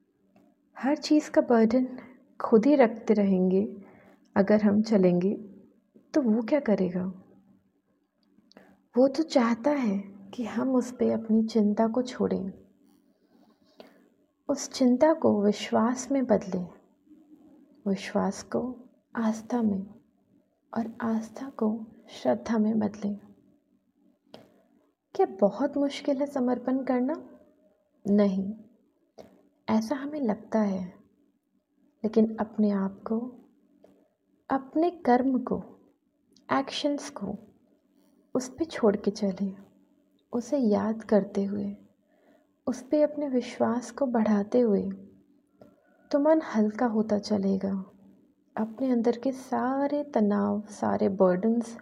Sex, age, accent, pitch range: female, 30-49, native, 205-275 Hz